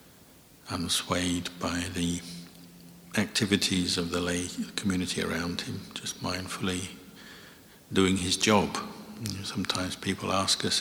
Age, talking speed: 60-79, 105 wpm